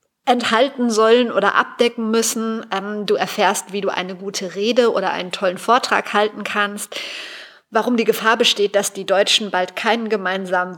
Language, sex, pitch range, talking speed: German, female, 195-235 Hz, 160 wpm